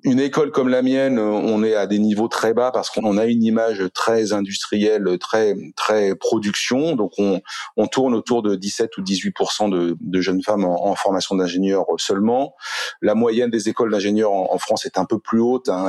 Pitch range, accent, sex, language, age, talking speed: 105-150 Hz, French, male, English, 40-59, 210 wpm